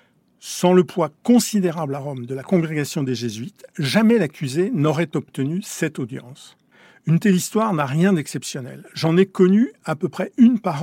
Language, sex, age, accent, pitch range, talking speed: French, male, 50-69, French, 145-190 Hz, 170 wpm